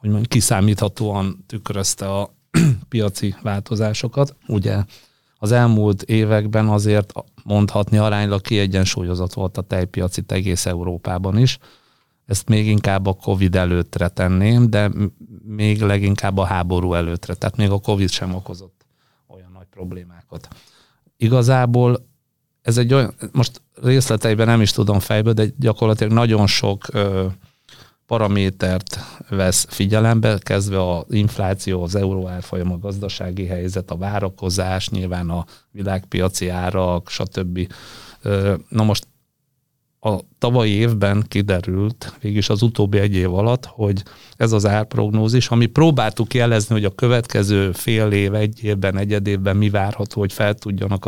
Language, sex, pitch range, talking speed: Hungarian, male, 95-115 Hz, 125 wpm